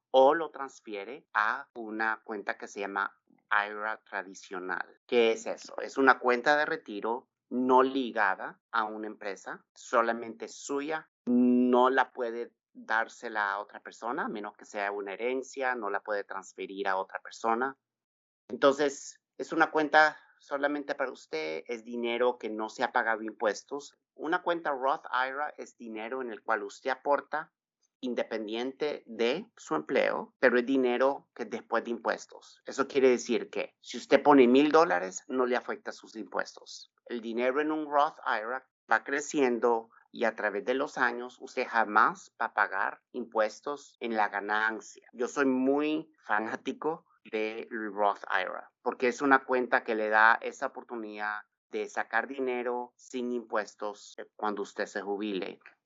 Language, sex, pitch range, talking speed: Spanish, male, 110-135 Hz, 155 wpm